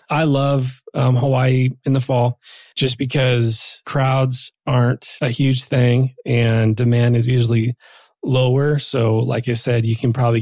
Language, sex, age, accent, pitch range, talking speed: English, male, 30-49, American, 120-140 Hz, 150 wpm